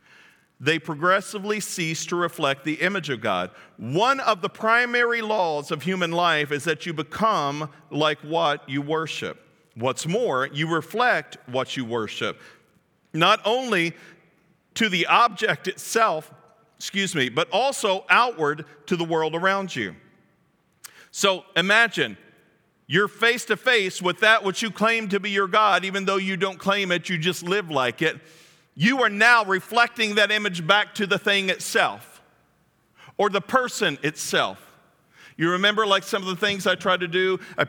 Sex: male